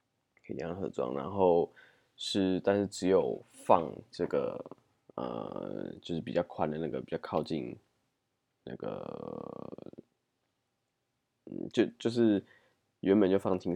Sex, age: male, 20-39